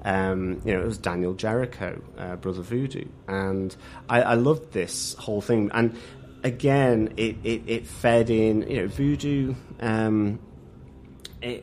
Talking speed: 145 wpm